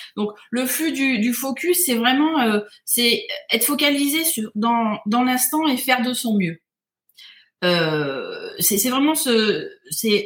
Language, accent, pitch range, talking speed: French, French, 195-255 Hz, 160 wpm